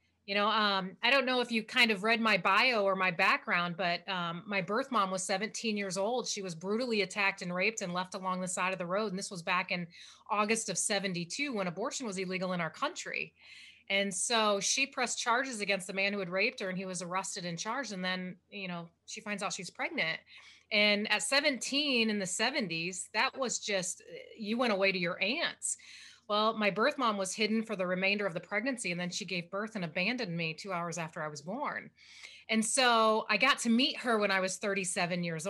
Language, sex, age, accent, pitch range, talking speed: English, female, 30-49, American, 185-225 Hz, 225 wpm